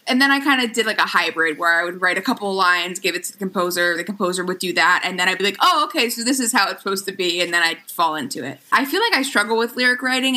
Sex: female